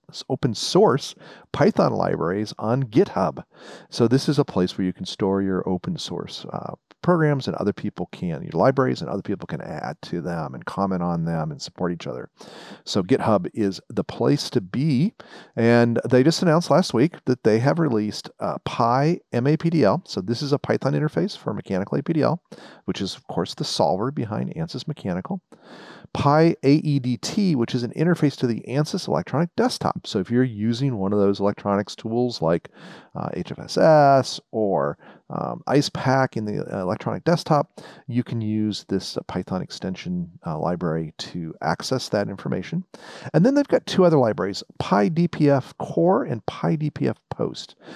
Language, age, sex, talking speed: English, 40-59, male, 165 wpm